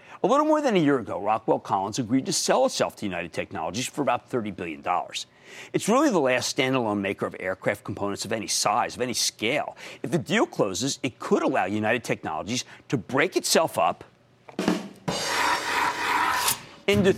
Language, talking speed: English, 170 wpm